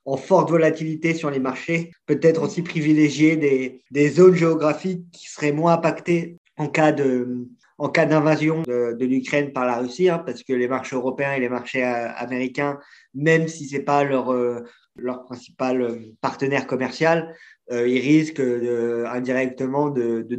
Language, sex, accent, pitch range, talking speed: French, male, French, 125-150 Hz, 165 wpm